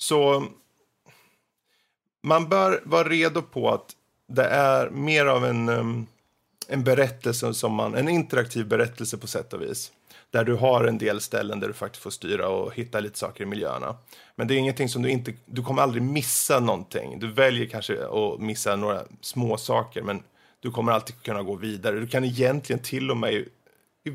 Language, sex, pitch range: Swedish, male, 110-135 Hz